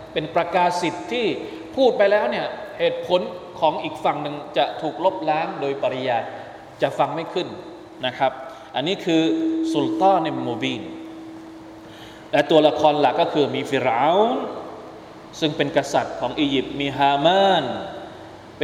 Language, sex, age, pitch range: Thai, male, 20-39, 140-180 Hz